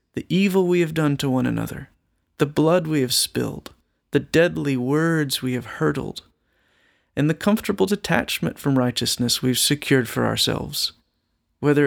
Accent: American